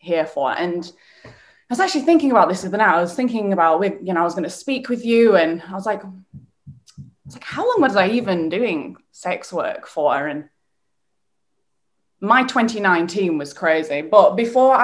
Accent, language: British, English